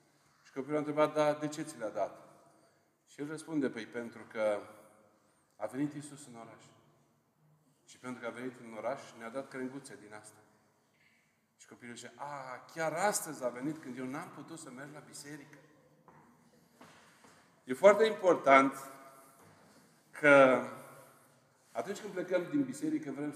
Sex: male